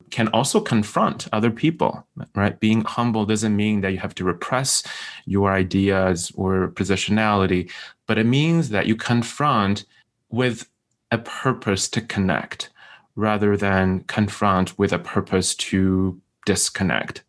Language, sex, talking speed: English, male, 130 wpm